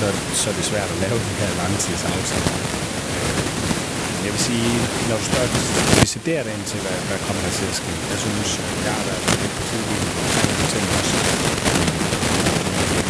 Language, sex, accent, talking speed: Danish, male, native, 140 wpm